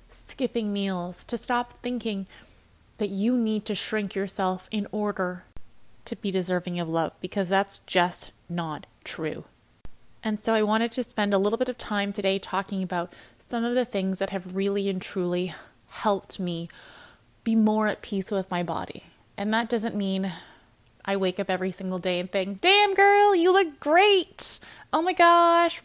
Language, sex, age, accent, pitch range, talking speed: English, female, 20-39, American, 190-245 Hz, 175 wpm